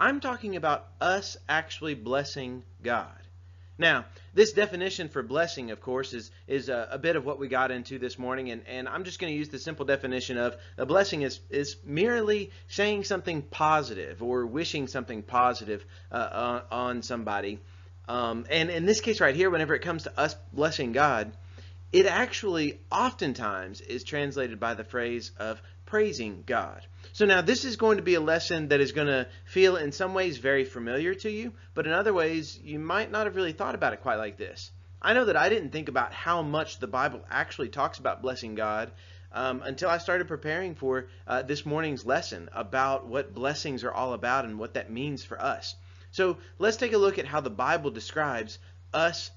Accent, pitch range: American, 100-160 Hz